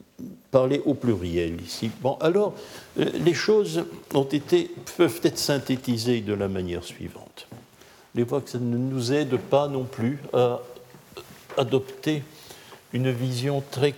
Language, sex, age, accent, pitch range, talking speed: French, male, 60-79, French, 105-150 Hz, 130 wpm